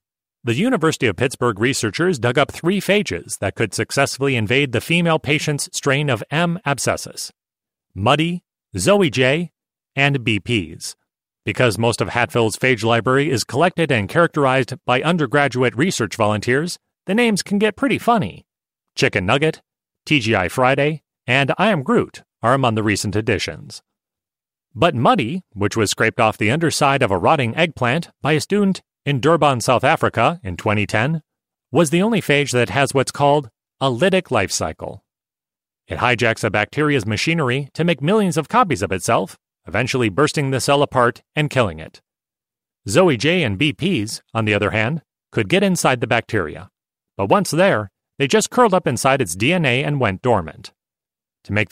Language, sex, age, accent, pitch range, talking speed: English, male, 30-49, American, 115-160 Hz, 160 wpm